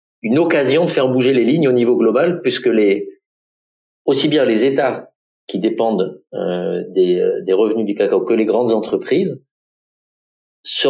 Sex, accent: male, French